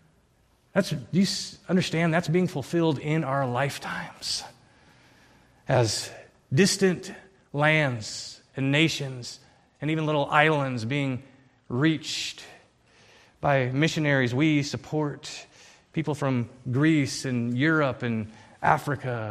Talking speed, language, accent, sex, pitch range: 95 wpm, English, American, male, 125-160 Hz